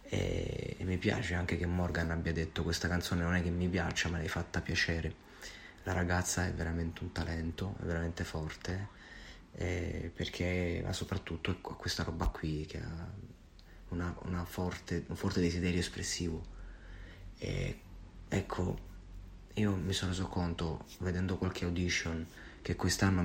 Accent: native